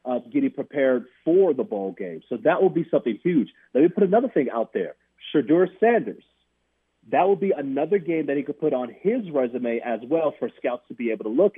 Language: English